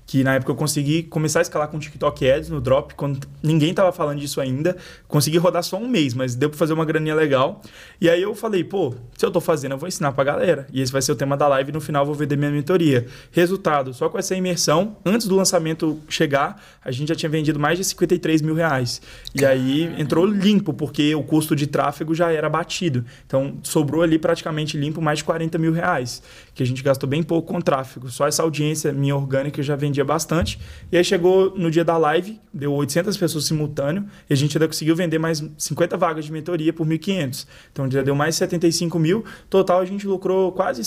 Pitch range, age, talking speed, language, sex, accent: 140-175 Hz, 20-39, 225 wpm, Portuguese, male, Brazilian